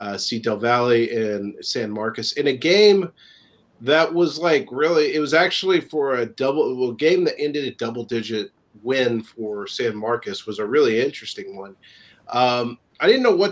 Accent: American